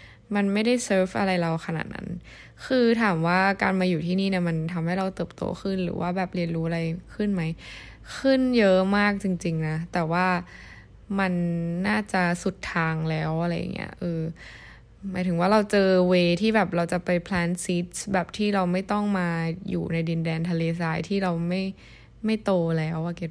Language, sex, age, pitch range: Thai, female, 10-29, 165-200 Hz